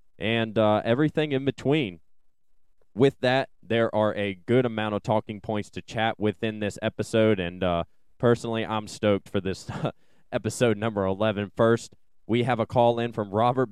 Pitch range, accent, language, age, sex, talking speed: 105-115 Hz, American, English, 20-39, male, 165 wpm